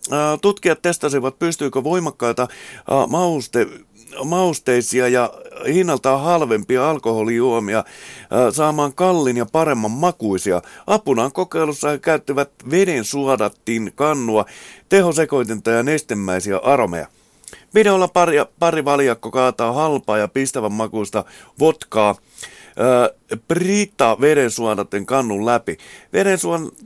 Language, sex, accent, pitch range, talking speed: Finnish, male, native, 115-165 Hz, 90 wpm